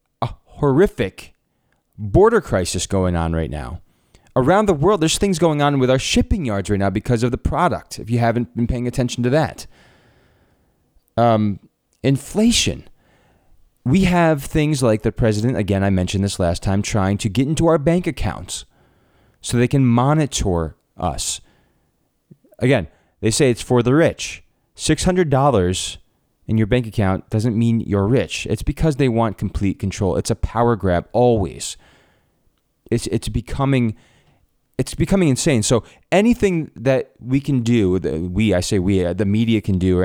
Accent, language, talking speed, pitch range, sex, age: American, English, 160 wpm, 95-130 Hz, male, 30-49